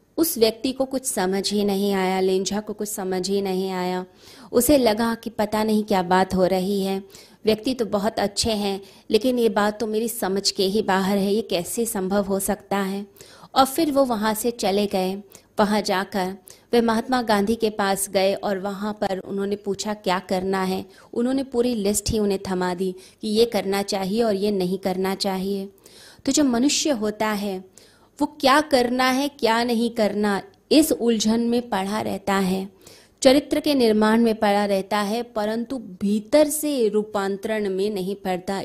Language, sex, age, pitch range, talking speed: Hindi, female, 30-49, 195-230 Hz, 180 wpm